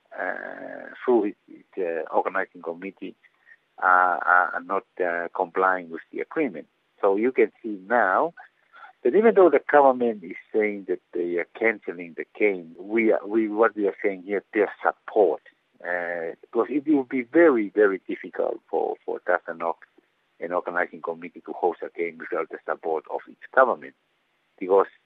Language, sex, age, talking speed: English, male, 60-79, 160 wpm